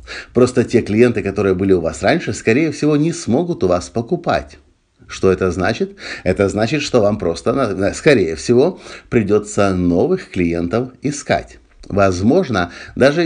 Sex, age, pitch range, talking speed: male, 50-69, 90-120 Hz, 140 wpm